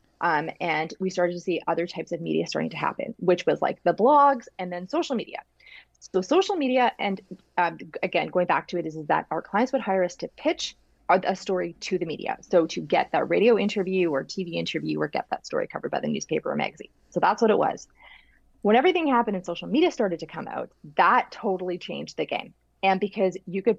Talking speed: 230 wpm